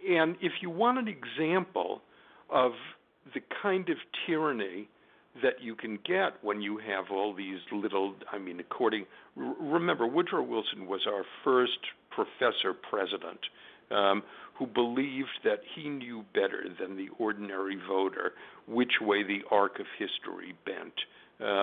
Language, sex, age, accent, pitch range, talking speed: English, male, 60-79, American, 100-140 Hz, 140 wpm